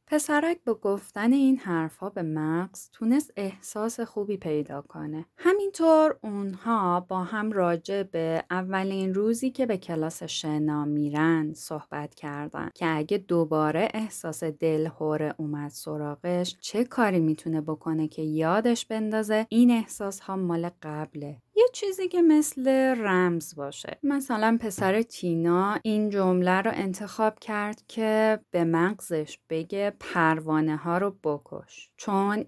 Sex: female